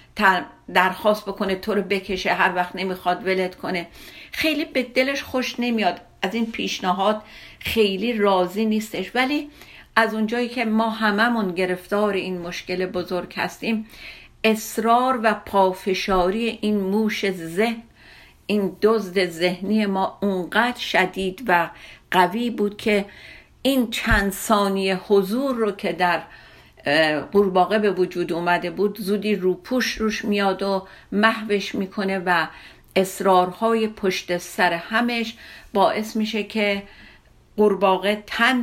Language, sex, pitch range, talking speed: Persian, female, 185-220 Hz, 120 wpm